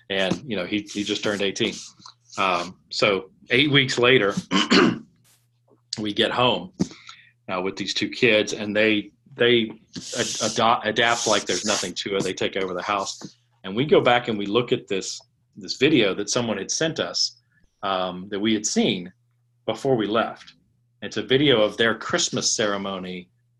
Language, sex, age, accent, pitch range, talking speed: English, male, 40-59, American, 105-120 Hz, 175 wpm